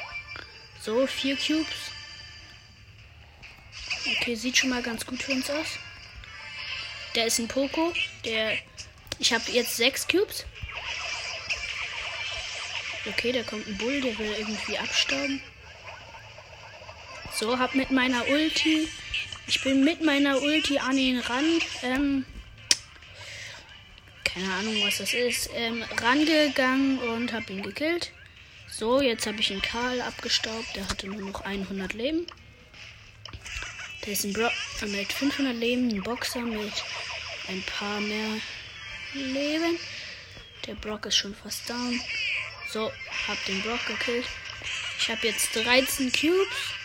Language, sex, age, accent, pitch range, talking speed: German, female, 20-39, German, 215-275 Hz, 125 wpm